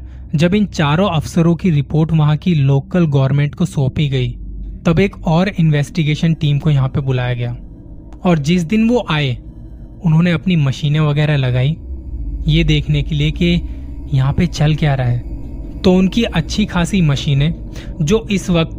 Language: Hindi